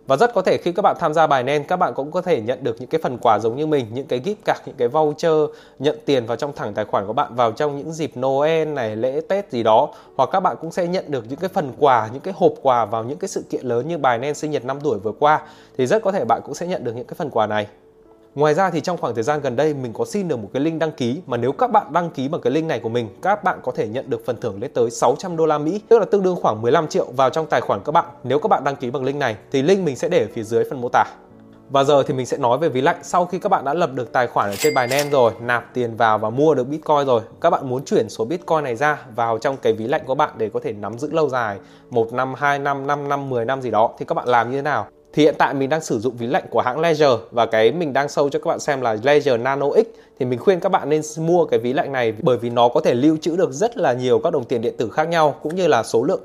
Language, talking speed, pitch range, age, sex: Vietnamese, 320 wpm, 125-170 Hz, 20-39, male